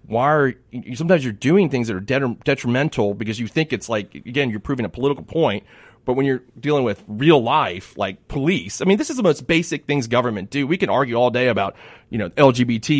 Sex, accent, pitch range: male, American, 110-140 Hz